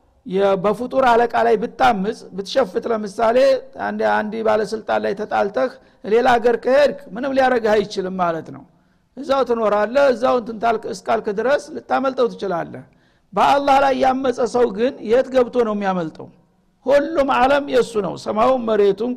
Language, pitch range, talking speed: Amharic, 215-250 Hz, 140 wpm